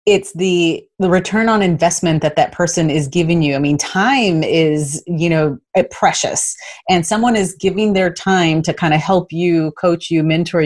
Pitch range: 155-185 Hz